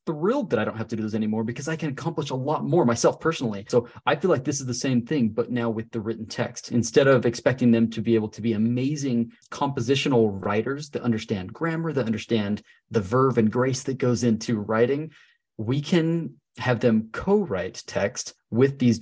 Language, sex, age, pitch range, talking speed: English, male, 30-49, 110-145 Hz, 210 wpm